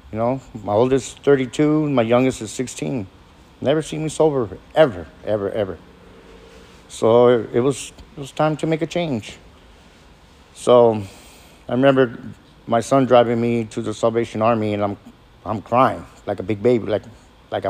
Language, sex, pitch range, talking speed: English, male, 100-135 Hz, 165 wpm